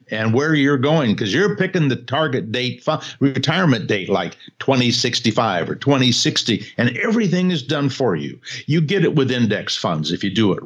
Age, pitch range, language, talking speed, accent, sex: 60-79, 110-155 Hz, English, 180 wpm, American, male